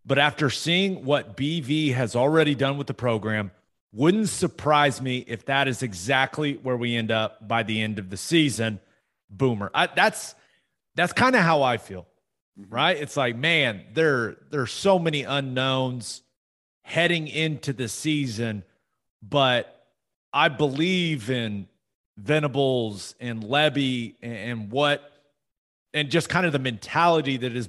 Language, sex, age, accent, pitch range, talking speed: English, male, 30-49, American, 120-160 Hz, 145 wpm